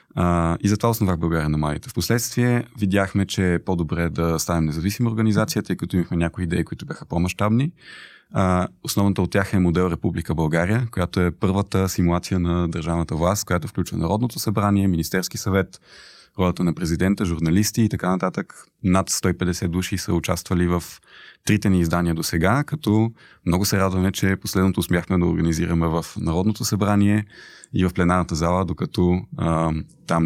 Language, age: Bulgarian, 20-39